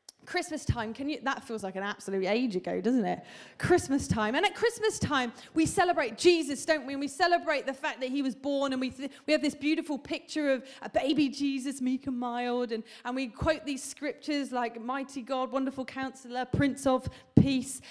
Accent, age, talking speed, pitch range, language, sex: British, 30-49, 210 wpm, 260-335 Hz, English, female